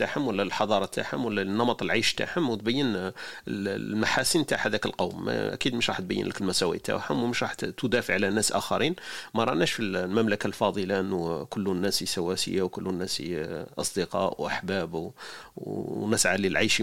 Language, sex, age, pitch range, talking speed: Arabic, male, 40-59, 100-120 Hz, 145 wpm